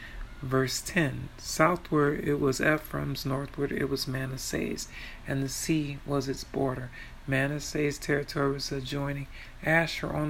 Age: 40-59